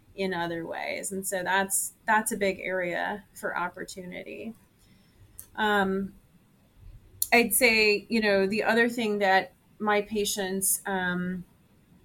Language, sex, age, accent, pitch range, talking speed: English, female, 30-49, American, 190-220 Hz, 120 wpm